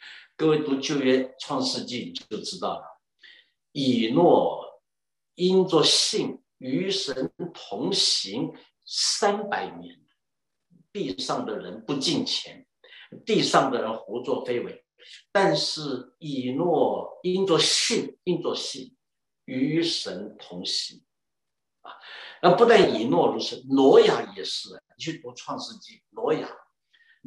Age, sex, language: 60-79, male, English